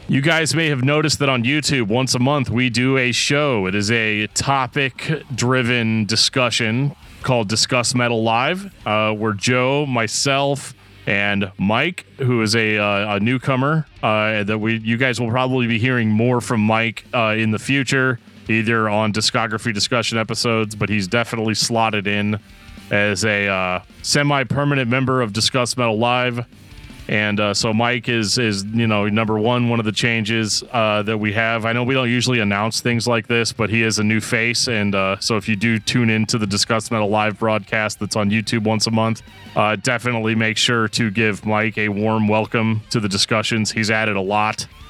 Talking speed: 185 wpm